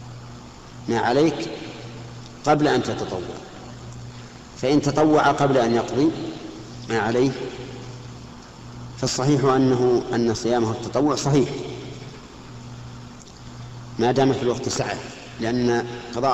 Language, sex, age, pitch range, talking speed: Arabic, male, 50-69, 115-130 Hz, 90 wpm